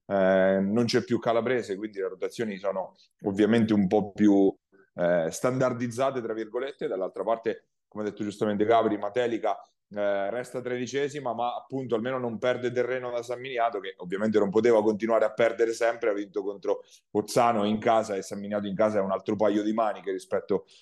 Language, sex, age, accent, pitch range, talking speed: Italian, male, 30-49, native, 105-125 Hz, 180 wpm